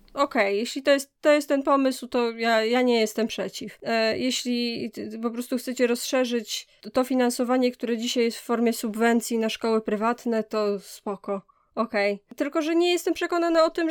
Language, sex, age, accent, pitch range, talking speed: Polish, female, 20-39, native, 220-270 Hz, 175 wpm